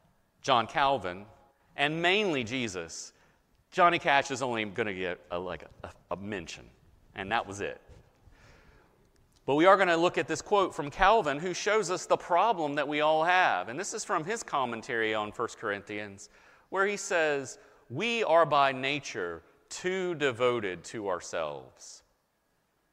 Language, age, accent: English, 40-59, American